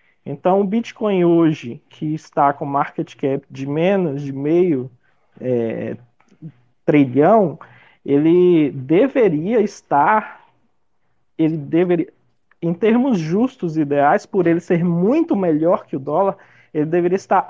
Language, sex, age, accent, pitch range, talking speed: Portuguese, male, 20-39, Brazilian, 140-180 Hz, 125 wpm